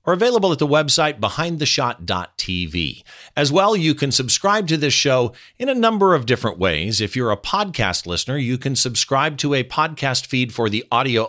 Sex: male